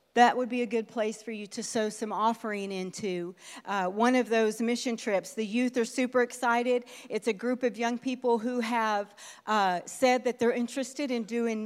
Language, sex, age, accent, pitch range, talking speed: English, female, 40-59, American, 215-265 Hz, 200 wpm